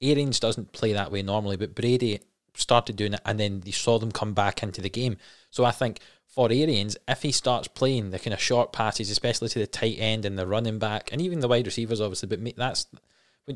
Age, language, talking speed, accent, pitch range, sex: 20-39, English, 235 wpm, British, 105-120 Hz, male